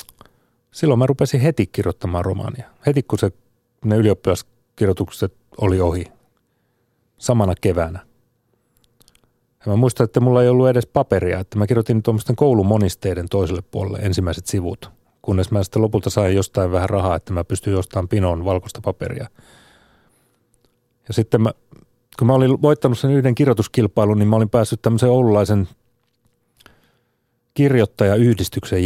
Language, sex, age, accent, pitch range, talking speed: Finnish, male, 30-49, native, 100-120 Hz, 135 wpm